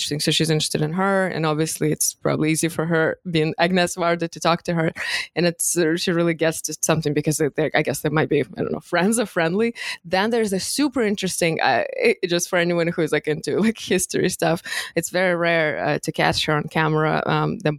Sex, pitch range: female, 155-175 Hz